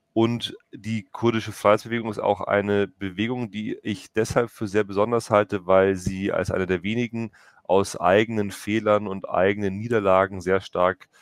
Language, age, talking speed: German, 30-49, 155 wpm